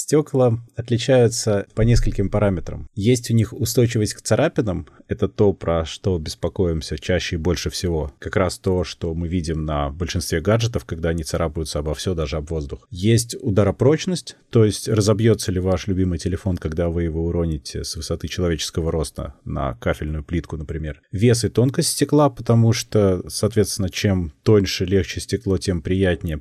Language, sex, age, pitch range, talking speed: Russian, male, 30-49, 85-115 Hz, 160 wpm